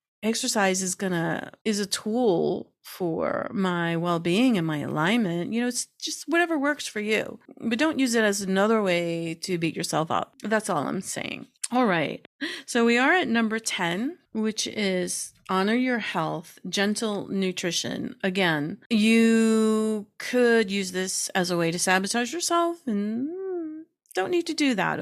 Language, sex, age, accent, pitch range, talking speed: English, female, 40-59, American, 185-245 Hz, 160 wpm